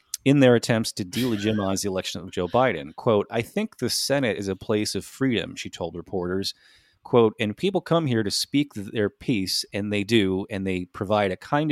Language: English